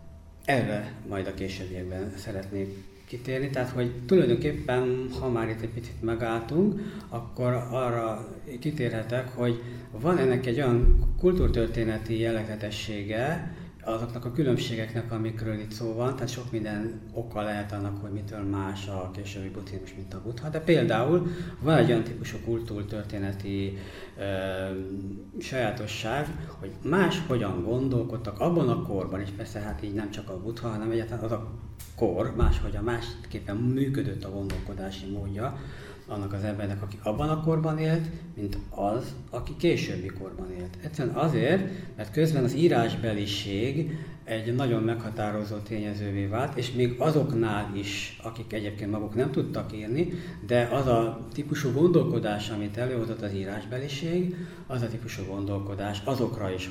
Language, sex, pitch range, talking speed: Hungarian, male, 100-130 Hz, 140 wpm